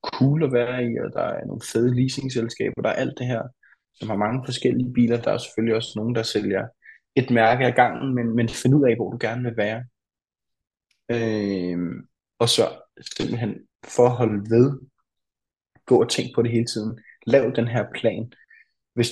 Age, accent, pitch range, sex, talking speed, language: 20-39, native, 105-125 Hz, male, 185 wpm, Danish